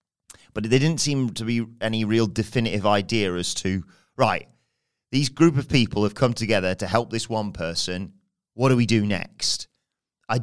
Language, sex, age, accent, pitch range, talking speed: English, male, 30-49, British, 95-120 Hz, 180 wpm